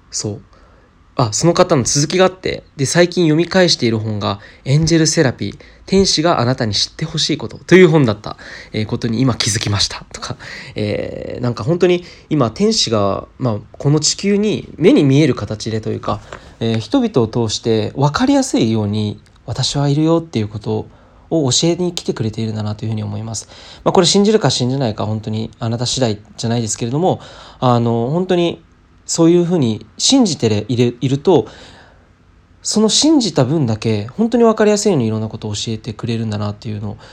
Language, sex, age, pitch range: Japanese, male, 20-39, 110-155 Hz